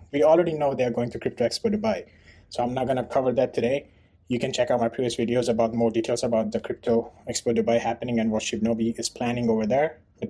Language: English